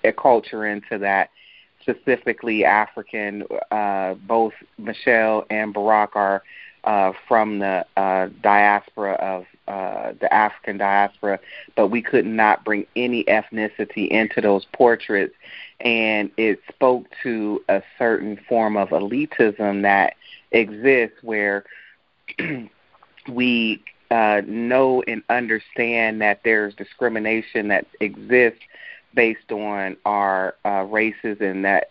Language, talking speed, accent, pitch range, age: English, 115 wpm, American, 100-115 Hz, 30-49